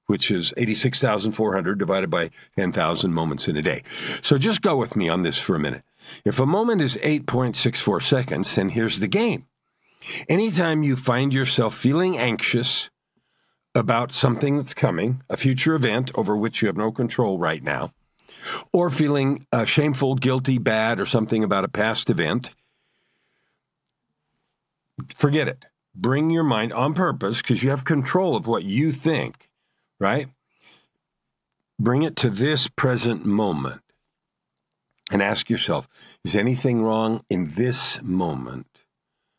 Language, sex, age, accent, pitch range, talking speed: English, male, 50-69, American, 110-140 Hz, 145 wpm